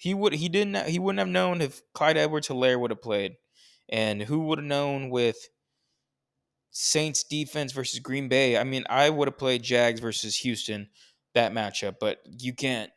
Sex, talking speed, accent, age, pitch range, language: male, 185 wpm, American, 20-39, 115-160 Hz, English